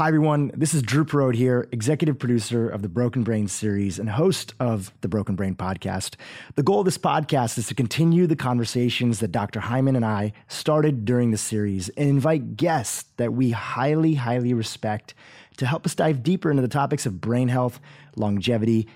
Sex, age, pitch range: male, 30-49, 110-145 Hz